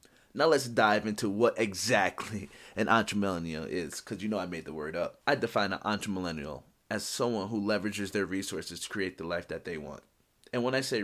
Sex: male